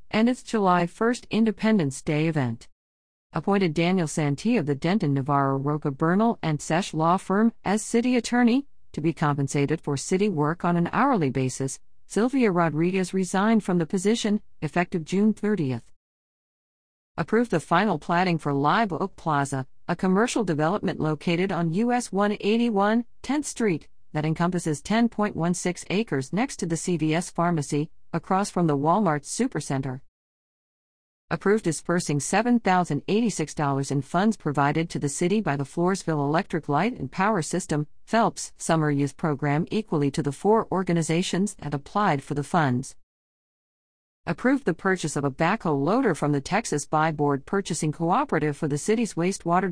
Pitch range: 150-210 Hz